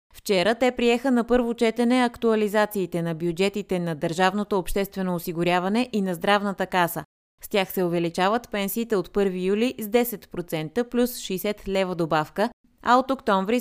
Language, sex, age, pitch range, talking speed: Bulgarian, female, 30-49, 180-230 Hz, 150 wpm